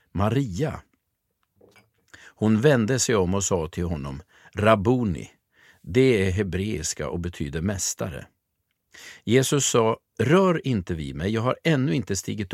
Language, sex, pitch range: Swedish, male, 95-140 Hz